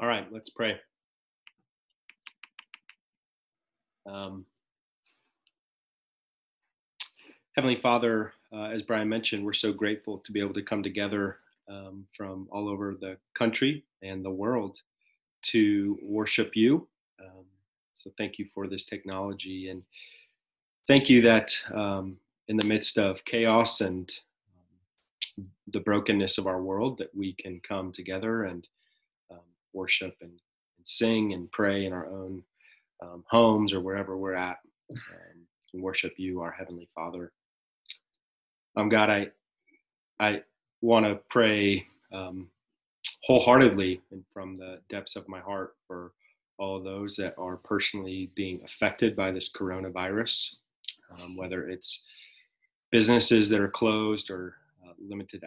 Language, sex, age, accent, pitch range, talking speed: English, male, 30-49, American, 95-110 Hz, 130 wpm